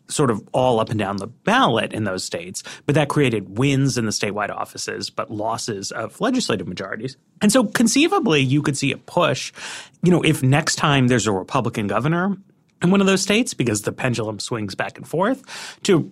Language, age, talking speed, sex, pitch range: English, 30-49, 200 wpm, male, 110-180 Hz